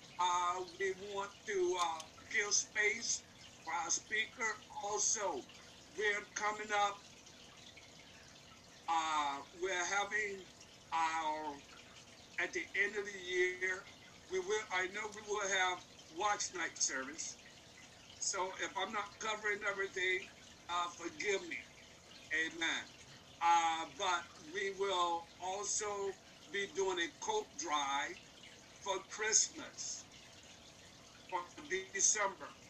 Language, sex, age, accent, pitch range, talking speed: English, male, 60-79, American, 175-210 Hz, 105 wpm